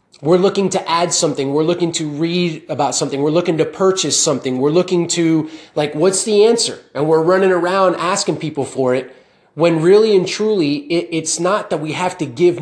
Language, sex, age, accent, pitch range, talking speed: English, male, 30-49, American, 155-190 Hz, 200 wpm